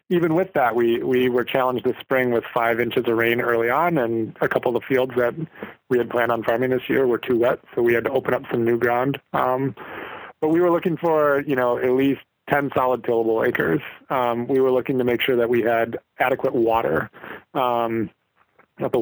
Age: 20-39